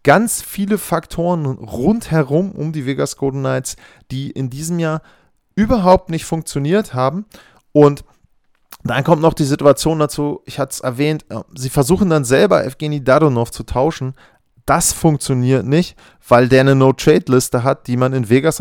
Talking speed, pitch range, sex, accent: 155 wpm, 120-150 Hz, male, German